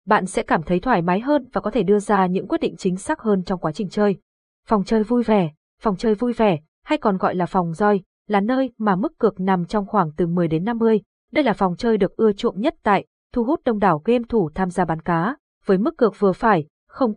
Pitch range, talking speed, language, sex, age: 185-240 Hz, 255 wpm, Vietnamese, female, 20-39